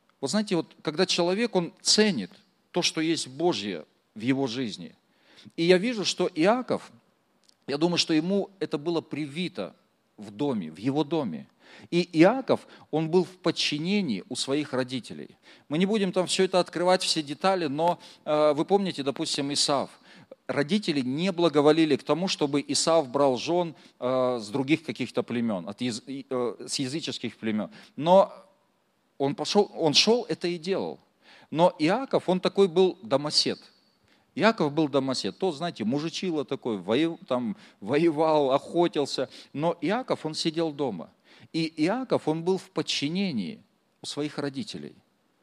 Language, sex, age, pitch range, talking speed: Russian, male, 40-59, 140-185 Hz, 145 wpm